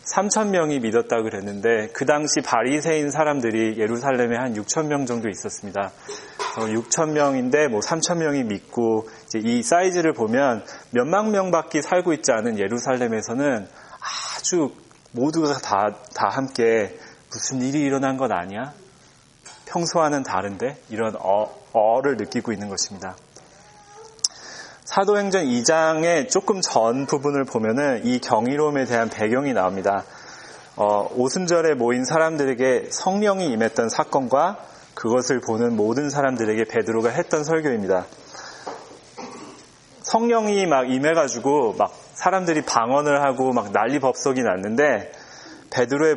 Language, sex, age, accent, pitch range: Korean, male, 30-49, native, 115-165 Hz